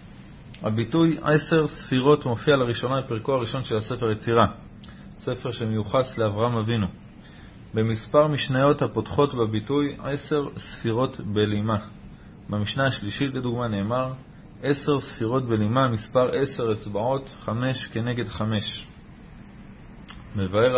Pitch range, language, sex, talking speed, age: 110-135 Hz, Hebrew, male, 100 wpm, 30-49